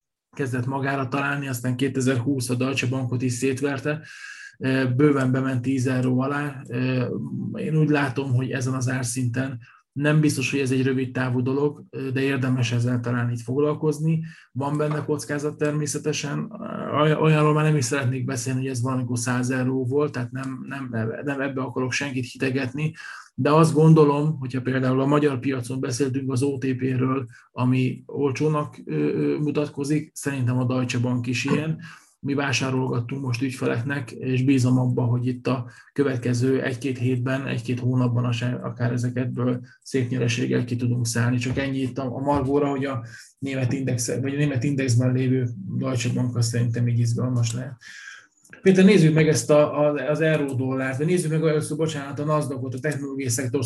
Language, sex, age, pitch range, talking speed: Hungarian, male, 20-39, 125-145 Hz, 155 wpm